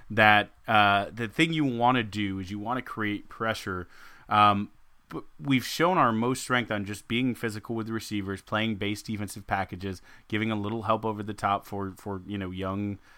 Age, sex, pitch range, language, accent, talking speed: 20-39, male, 100-115 Hz, English, American, 200 wpm